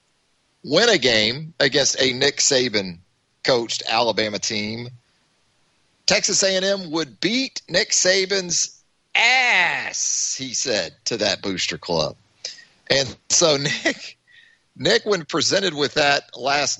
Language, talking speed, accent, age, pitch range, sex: English, 110 wpm, American, 40-59, 110-160 Hz, male